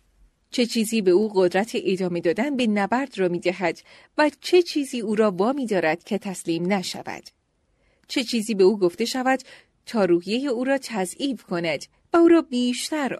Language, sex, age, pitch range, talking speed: Persian, female, 30-49, 185-275 Hz, 175 wpm